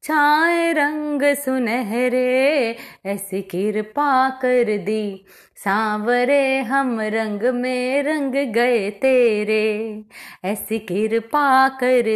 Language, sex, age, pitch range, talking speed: Hindi, female, 20-39, 225-285 Hz, 85 wpm